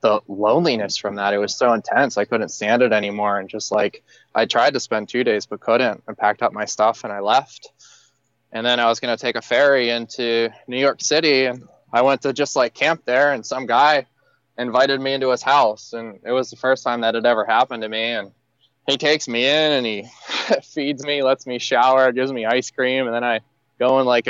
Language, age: English, 20-39